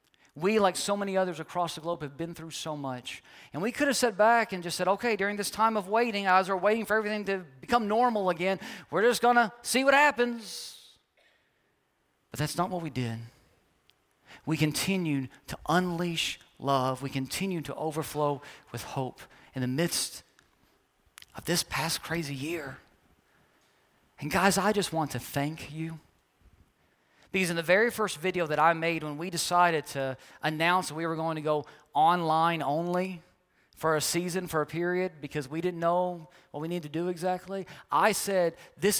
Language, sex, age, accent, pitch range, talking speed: English, male, 40-59, American, 150-195 Hz, 180 wpm